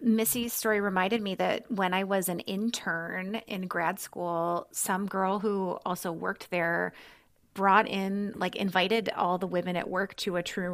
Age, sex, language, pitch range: 30-49, female, English, 180-225 Hz